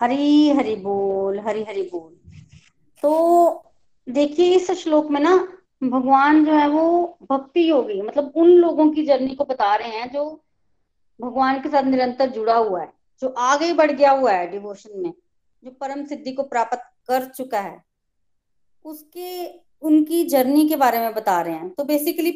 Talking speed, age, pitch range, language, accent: 165 wpm, 20-39, 240-300 Hz, Hindi, native